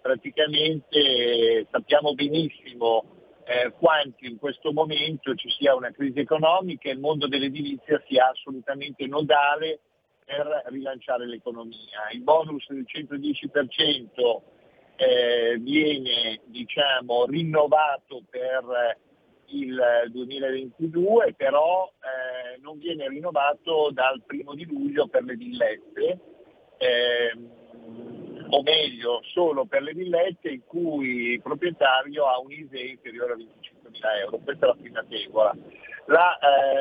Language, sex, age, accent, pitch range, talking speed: Italian, male, 50-69, native, 130-175 Hz, 115 wpm